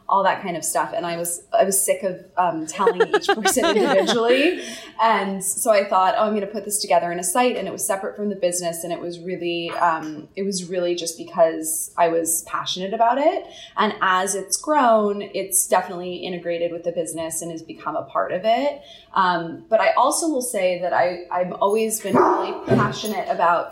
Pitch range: 175-220 Hz